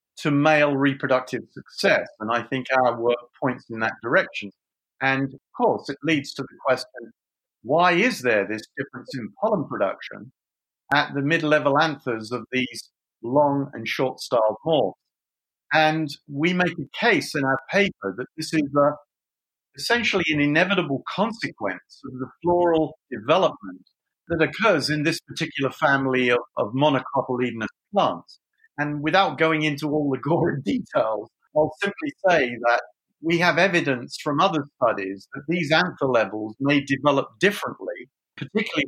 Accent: British